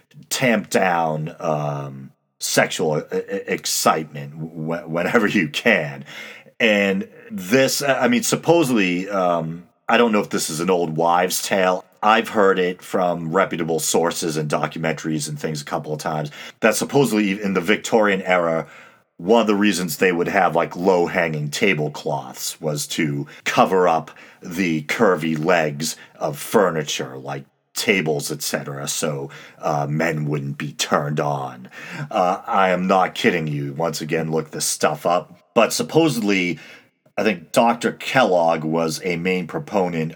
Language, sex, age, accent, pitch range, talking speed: English, male, 40-59, American, 75-90 Hz, 140 wpm